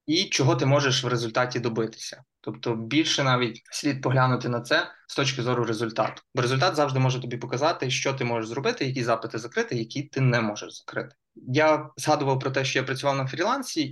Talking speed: 195 wpm